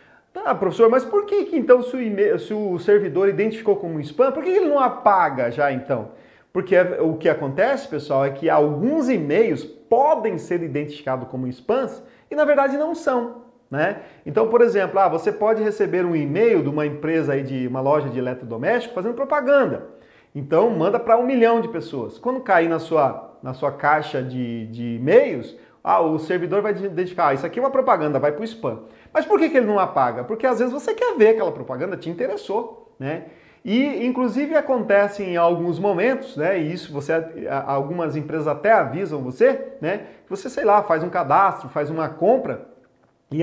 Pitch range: 155-250 Hz